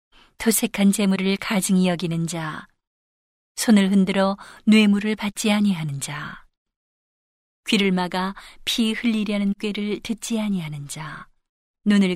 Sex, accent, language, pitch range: female, native, Korean, 180-205 Hz